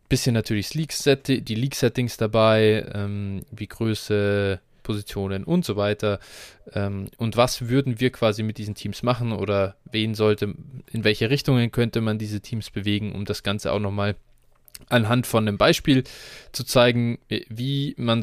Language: German